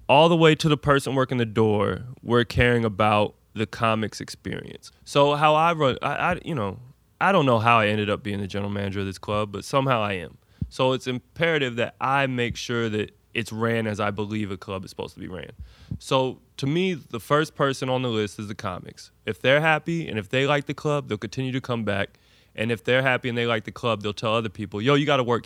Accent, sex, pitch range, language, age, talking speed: American, male, 105-130 Hz, English, 20-39, 245 wpm